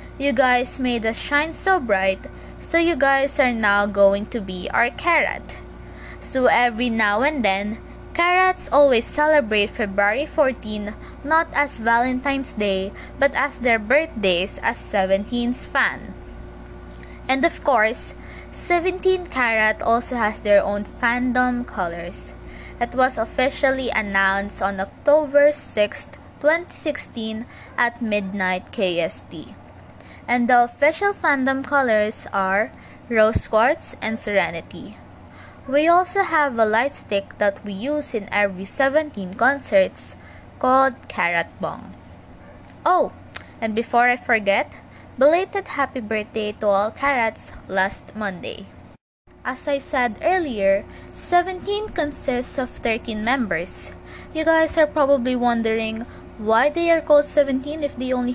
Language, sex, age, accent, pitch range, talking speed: English, female, 20-39, Filipino, 210-285 Hz, 125 wpm